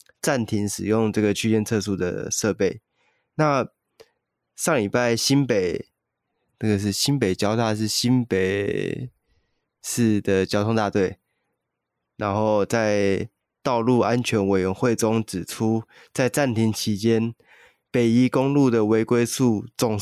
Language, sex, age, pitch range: Chinese, male, 20-39, 105-120 Hz